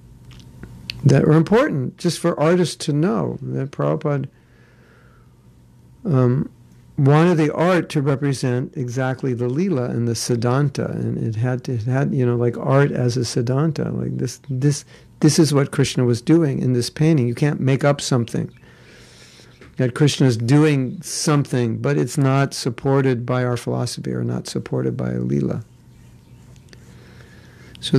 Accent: American